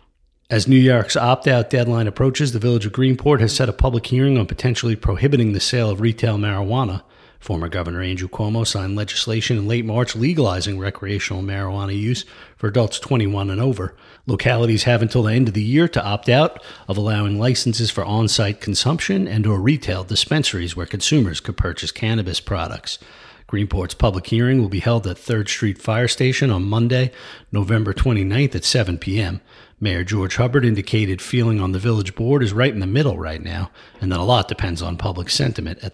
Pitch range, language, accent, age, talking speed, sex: 100-125 Hz, English, American, 40-59, 185 wpm, male